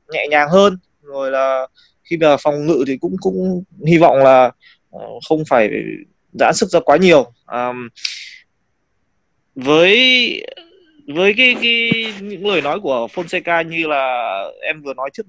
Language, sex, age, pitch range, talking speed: Vietnamese, male, 20-39, 135-190 Hz, 150 wpm